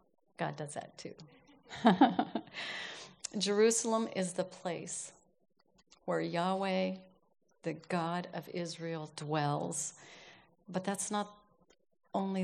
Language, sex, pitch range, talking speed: English, female, 165-185 Hz, 90 wpm